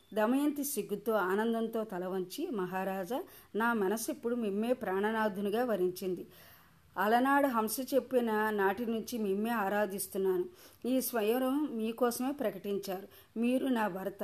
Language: Telugu